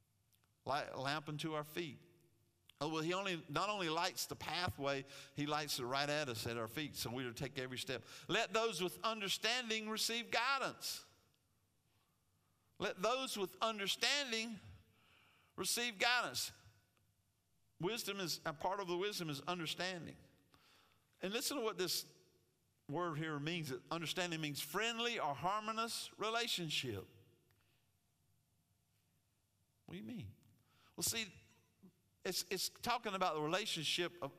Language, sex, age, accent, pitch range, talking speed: English, male, 50-69, American, 125-185 Hz, 135 wpm